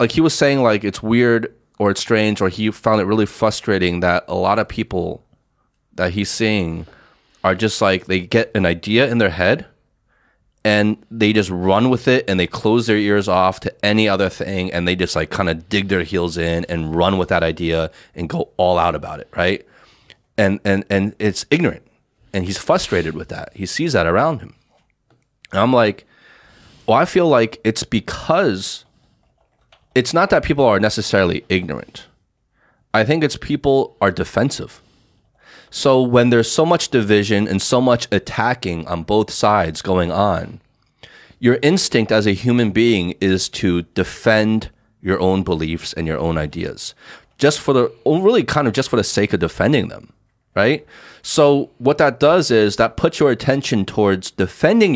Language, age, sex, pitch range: Chinese, 30-49, male, 90-115 Hz